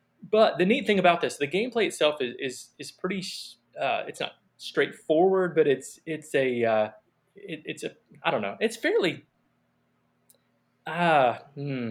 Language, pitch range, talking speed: English, 125-170 Hz, 160 wpm